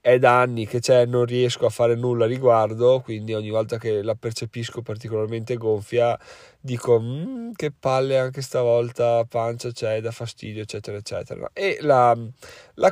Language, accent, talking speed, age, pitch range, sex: Italian, native, 165 wpm, 30-49, 110-140 Hz, male